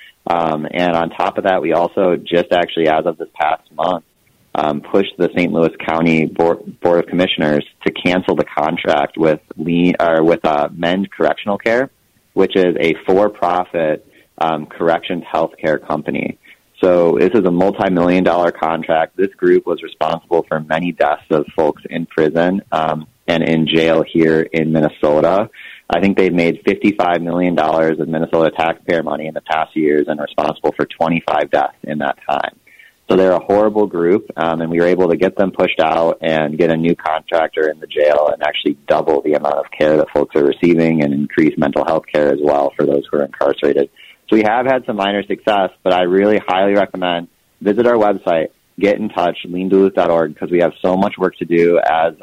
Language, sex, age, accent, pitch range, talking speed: English, male, 30-49, American, 80-90 Hz, 190 wpm